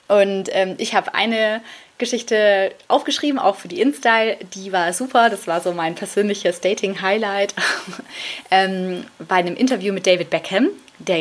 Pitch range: 180-230 Hz